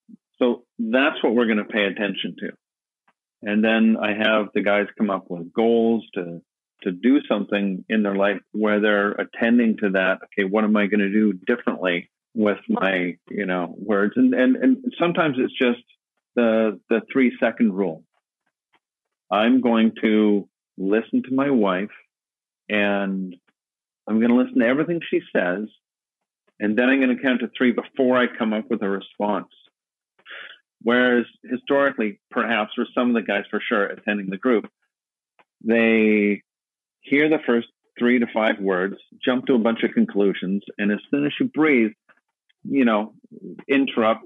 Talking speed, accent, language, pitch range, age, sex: 165 wpm, American, English, 105-130 Hz, 50-69, male